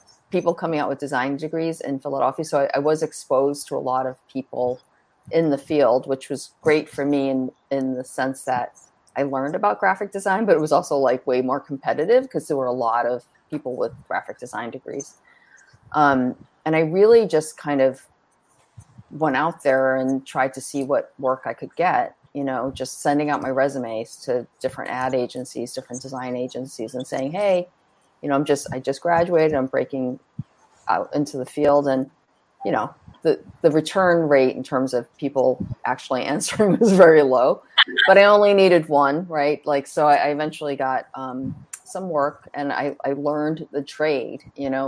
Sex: female